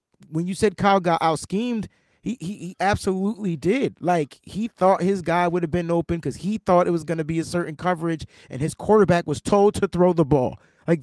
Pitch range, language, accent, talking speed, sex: 175-225 Hz, English, American, 230 wpm, male